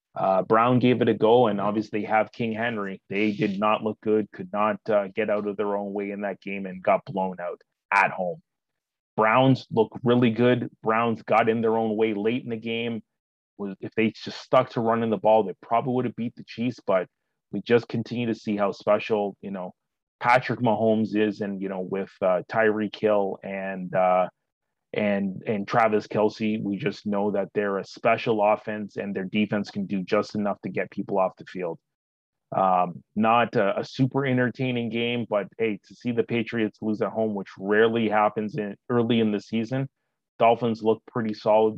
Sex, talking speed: male, 200 wpm